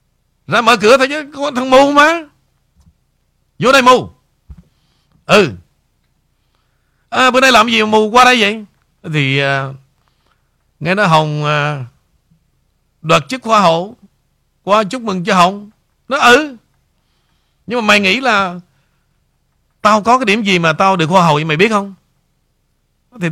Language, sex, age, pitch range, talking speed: Vietnamese, male, 60-79, 140-230 Hz, 150 wpm